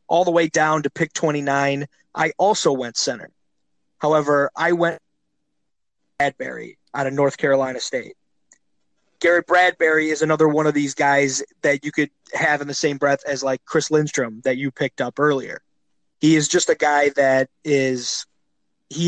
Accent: American